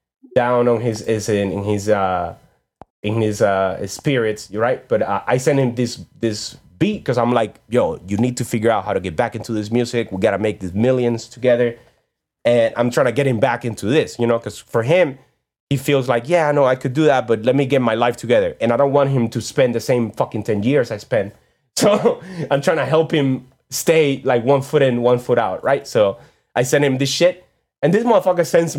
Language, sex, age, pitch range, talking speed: English, male, 20-39, 120-150 Hz, 240 wpm